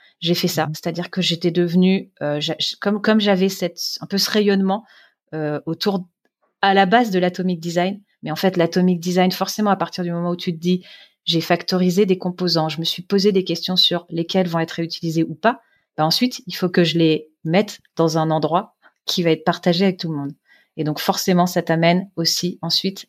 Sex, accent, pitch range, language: female, French, 160-185 Hz, French